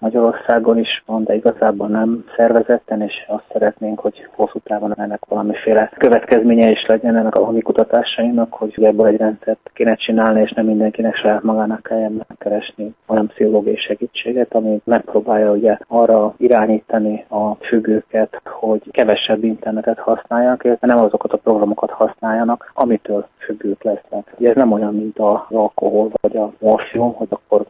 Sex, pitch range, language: male, 105-110 Hz, Hungarian